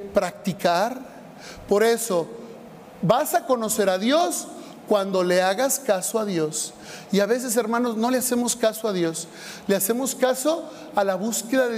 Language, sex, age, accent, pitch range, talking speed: Spanish, male, 40-59, Mexican, 200-245 Hz, 160 wpm